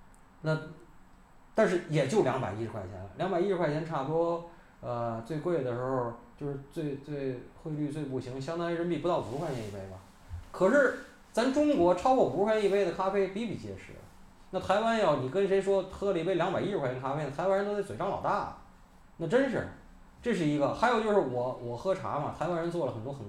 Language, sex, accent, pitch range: Chinese, male, native, 120-195 Hz